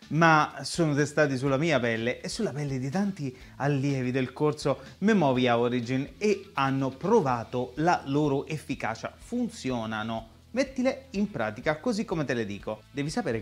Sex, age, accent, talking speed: male, 30-49, native, 150 wpm